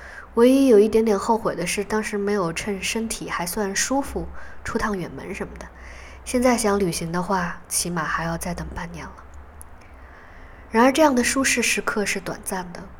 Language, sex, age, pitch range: Chinese, female, 20-39, 160-210 Hz